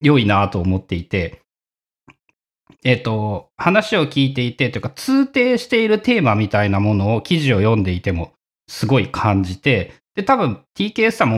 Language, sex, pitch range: Japanese, male, 105-160 Hz